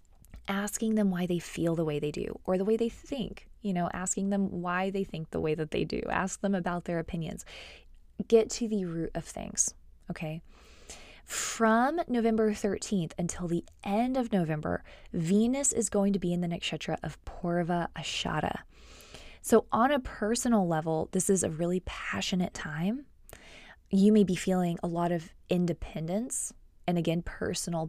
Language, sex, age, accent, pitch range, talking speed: English, female, 20-39, American, 170-210 Hz, 170 wpm